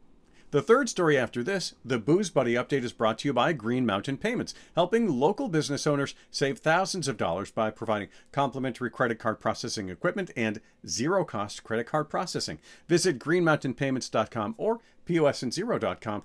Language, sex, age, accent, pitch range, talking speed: English, male, 50-69, American, 110-150 Hz, 150 wpm